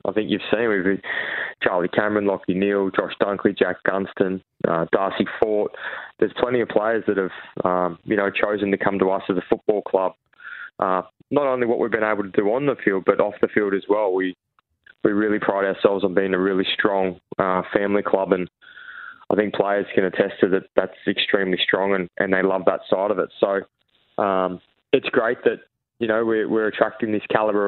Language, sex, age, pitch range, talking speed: English, male, 20-39, 95-110 Hz, 210 wpm